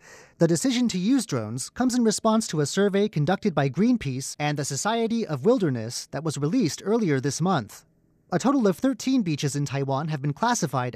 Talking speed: 190 wpm